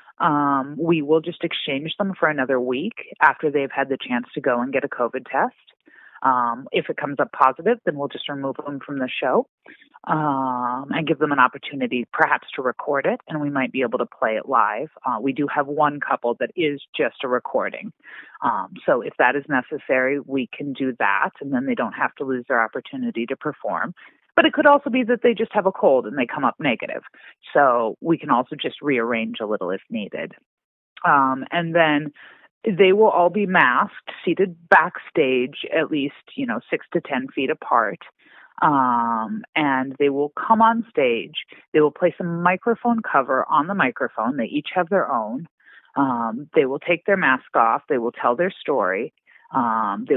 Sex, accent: female, American